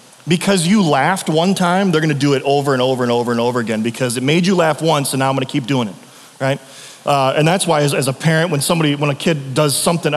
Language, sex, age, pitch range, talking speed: English, male, 30-49, 145-195 Hz, 270 wpm